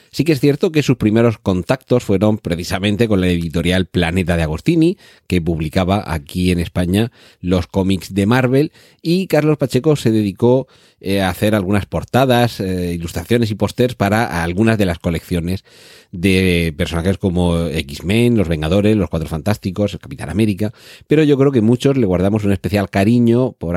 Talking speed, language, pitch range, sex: 165 wpm, Spanish, 90-115 Hz, male